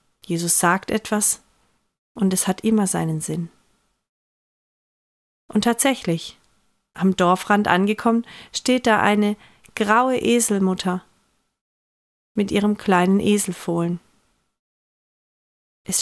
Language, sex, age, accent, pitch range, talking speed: German, female, 30-49, German, 180-230 Hz, 90 wpm